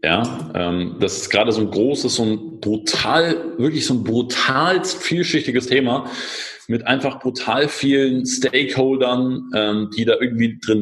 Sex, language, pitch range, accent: male, German, 105-135 Hz, German